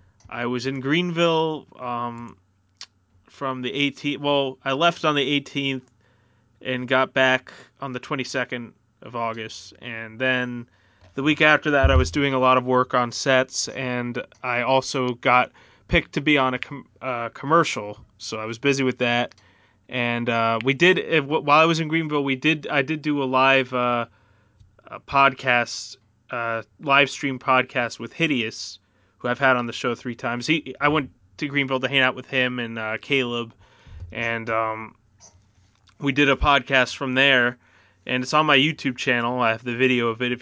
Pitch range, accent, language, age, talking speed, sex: 110-135 Hz, American, English, 20-39, 175 wpm, male